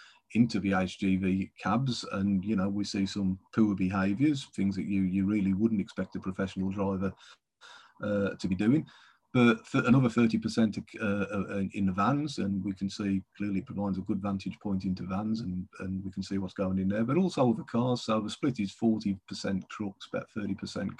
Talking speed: 185 wpm